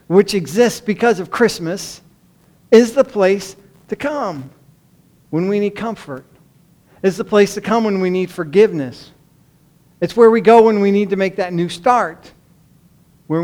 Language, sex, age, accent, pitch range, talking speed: English, male, 50-69, American, 150-190 Hz, 160 wpm